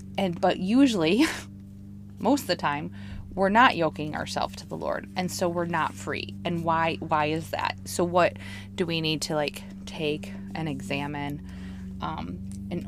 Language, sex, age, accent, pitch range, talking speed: English, female, 20-39, American, 150-195 Hz, 170 wpm